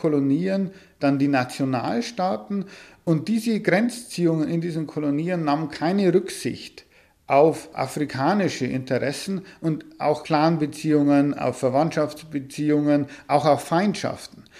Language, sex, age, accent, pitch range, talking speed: German, male, 50-69, German, 145-195 Hz, 100 wpm